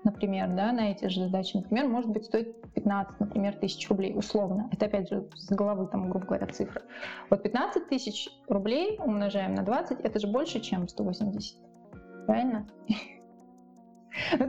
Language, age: Russian, 20-39